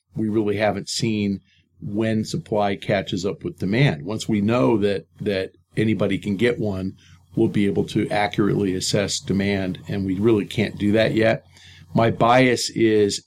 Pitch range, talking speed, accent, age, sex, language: 100-110 Hz, 165 wpm, American, 50-69, male, English